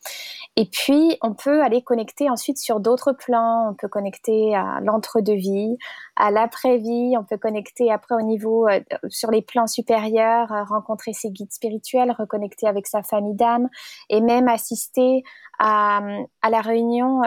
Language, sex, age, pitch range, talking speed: French, female, 20-39, 215-255 Hz, 155 wpm